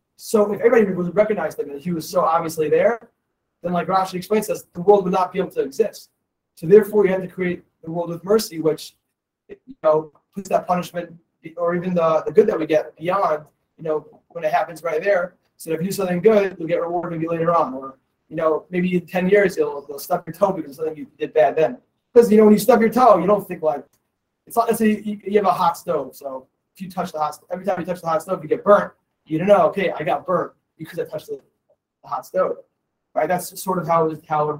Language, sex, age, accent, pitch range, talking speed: English, male, 20-39, American, 155-200 Hz, 255 wpm